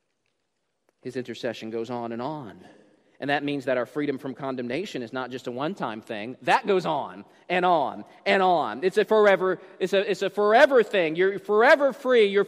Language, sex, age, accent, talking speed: English, male, 40-59, American, 190 wpm